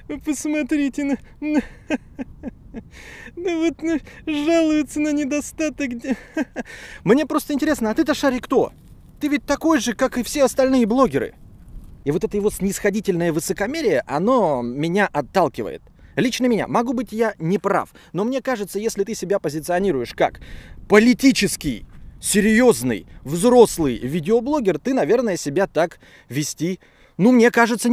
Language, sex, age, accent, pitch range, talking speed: Russian, male, 20-39, native, 190-275 Hz, 130 wpm